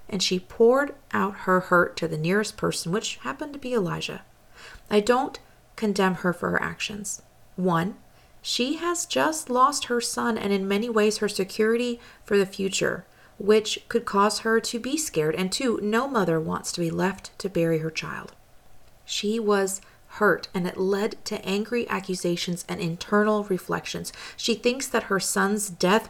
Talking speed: 170 wpm